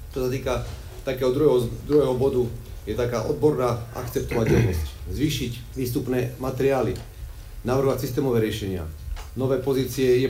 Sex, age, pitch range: male, 40-59, 100-125 Hz